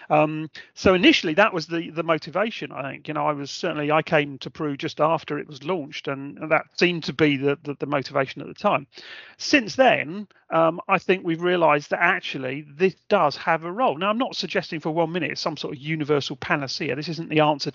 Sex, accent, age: male, British, 40-59